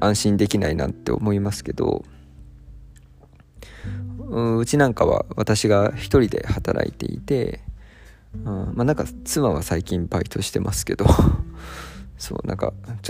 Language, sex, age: Japanese, male, 20-39